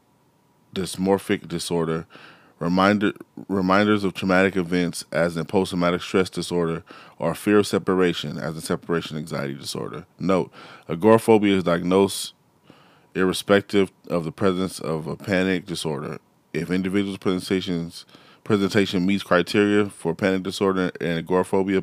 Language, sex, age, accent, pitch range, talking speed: English, male, 10-29, American, 85-95 Hz, 120 wpm